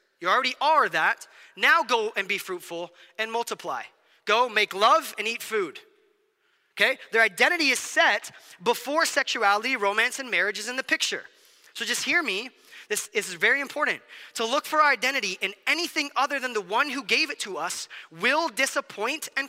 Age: 30-49